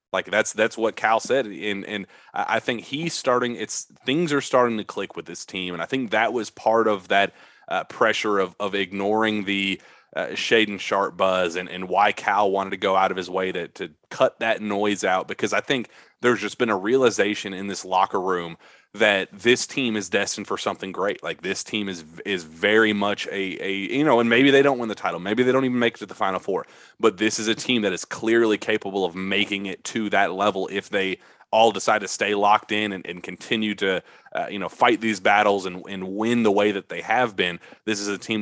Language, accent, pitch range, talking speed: English, American, 95-110 Hz, 240 wpm